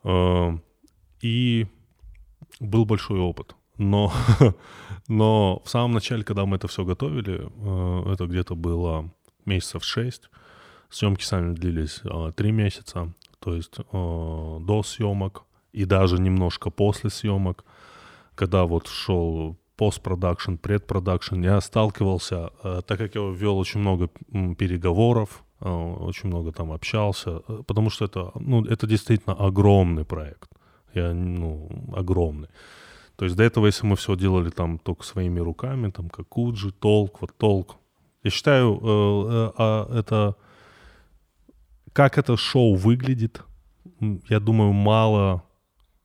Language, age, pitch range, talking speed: Russian, 20-39, 90-110 Hz, 120 wpm